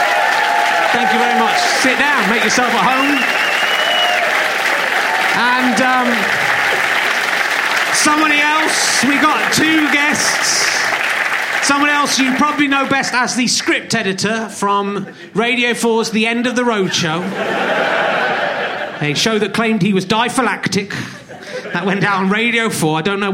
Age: 30-49